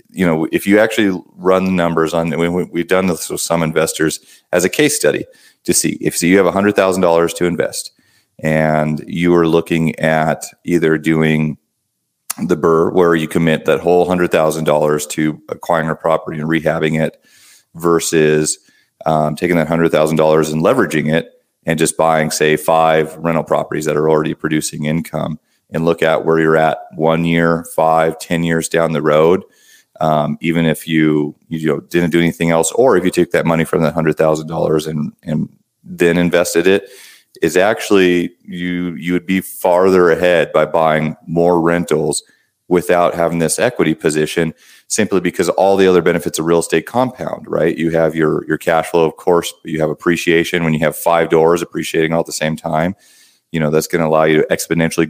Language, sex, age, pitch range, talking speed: English, male, 30-49, 80-85 Hz, 195 wpm